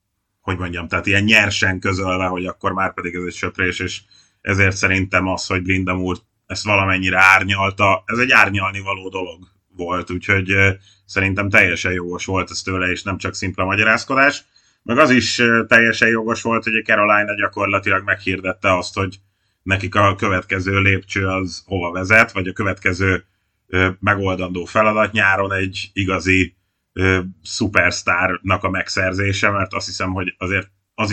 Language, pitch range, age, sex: Hungarian, 95-100 Hz, 30-49, male